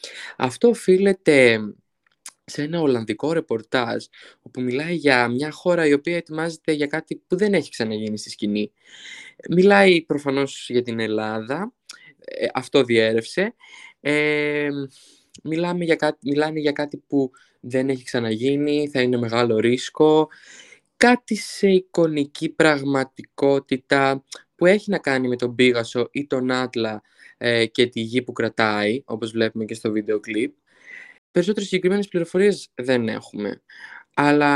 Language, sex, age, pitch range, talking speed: Greek, male, 20-39, 120-170 Hz, 125 wpm